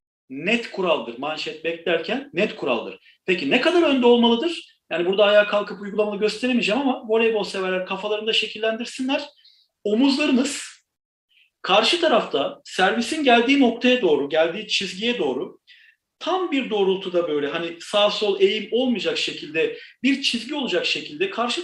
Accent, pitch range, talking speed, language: native, 190-270 Hz, 130 wpm, Turkish